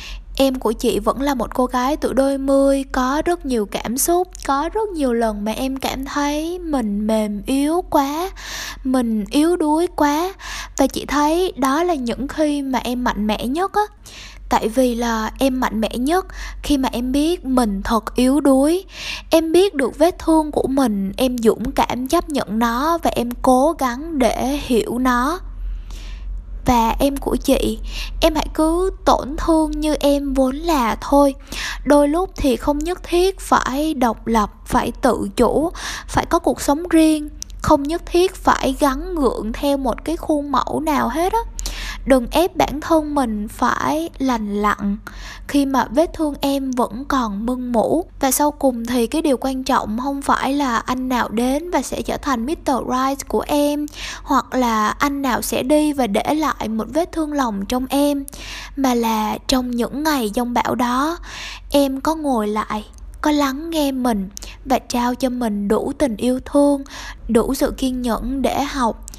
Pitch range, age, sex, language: 240-300 Hz, 10-29, female, Vietnamese